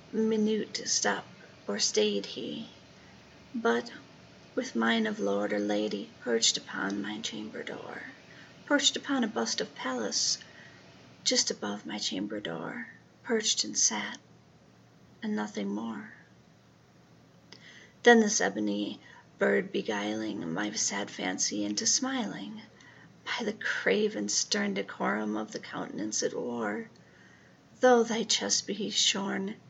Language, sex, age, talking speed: English, female, 40-59, 120 wpm